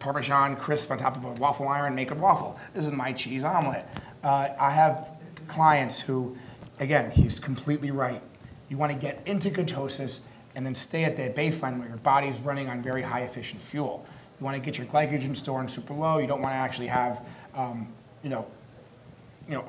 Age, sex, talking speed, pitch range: 30-49, male, 205 wpm, 125-150 Hz